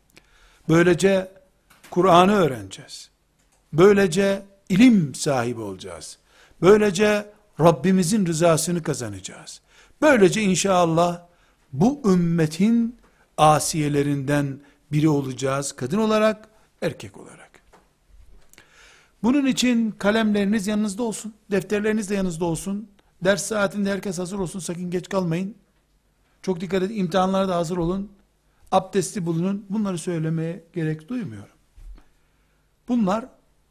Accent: native